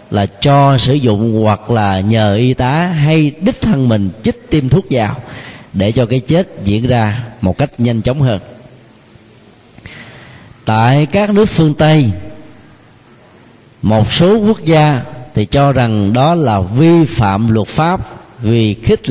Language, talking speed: Vietnamese, 150 wpm